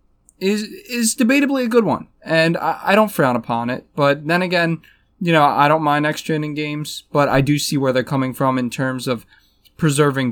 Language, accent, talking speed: English, American, 210 wpm